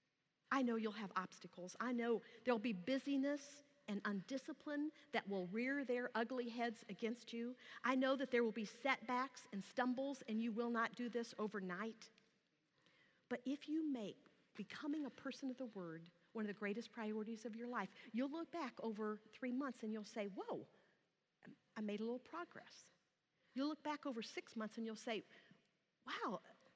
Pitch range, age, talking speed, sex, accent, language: 210-270 Hz, 50-69, 175 wpm, female, American, English